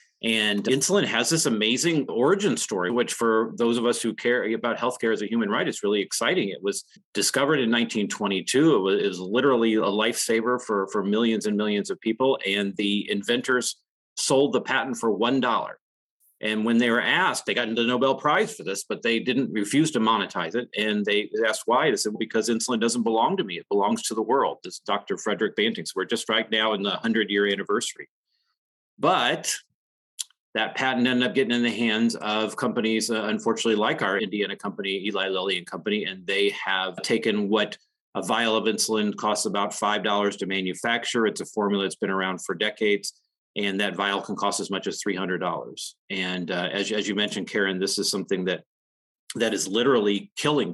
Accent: American